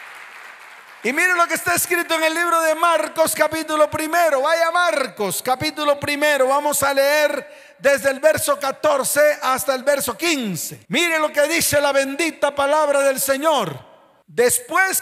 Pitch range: 240-325 Hz